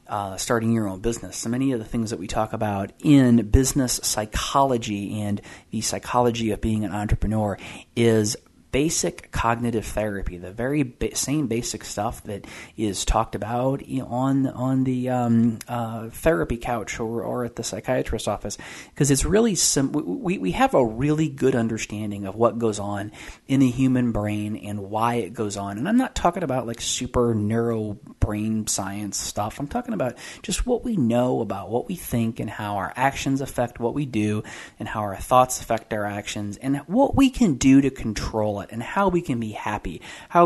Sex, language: male, English